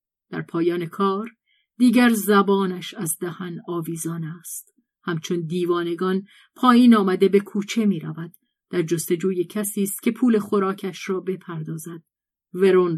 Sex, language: female, Persian